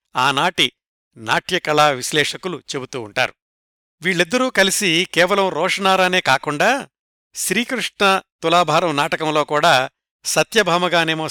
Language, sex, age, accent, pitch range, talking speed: Telugu, male, 60-79, native, 140-180 Hz, 80 wpm